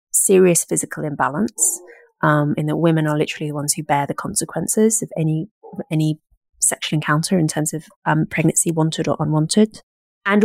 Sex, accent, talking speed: female, British, 165 wpm